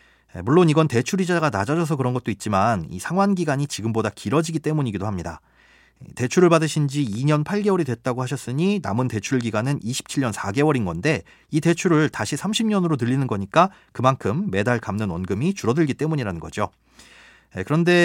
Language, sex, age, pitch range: Korean, male, 30-49, 115-160 Hz